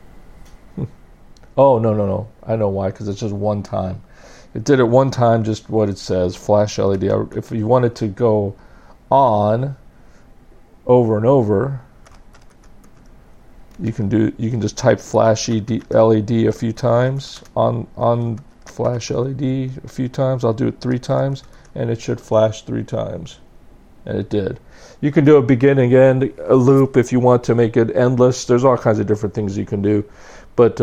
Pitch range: 105-135 Hz